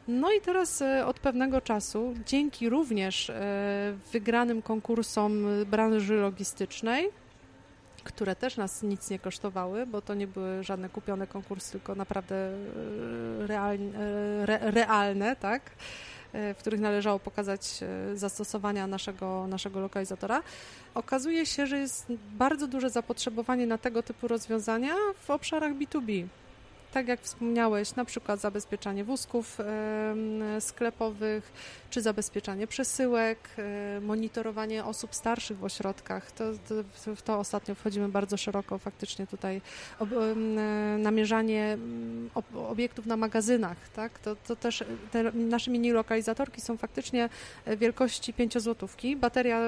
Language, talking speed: Polish, 125 wpm